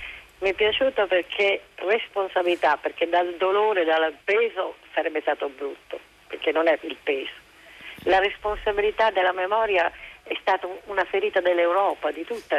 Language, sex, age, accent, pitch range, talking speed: Italian, female, 50-69, native, 155-190 Hz, 140 wpm